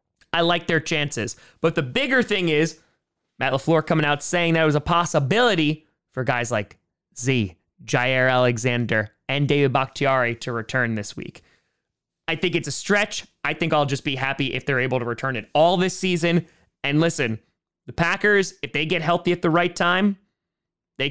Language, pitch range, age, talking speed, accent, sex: English, 130-190 Hz, 20-39, 185 wpm, American, male